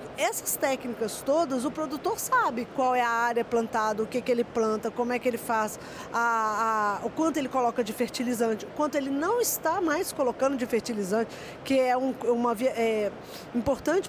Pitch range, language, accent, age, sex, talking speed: 230-295 Hz, Portuguese, Brazilian, 20-39, female, 190 wpm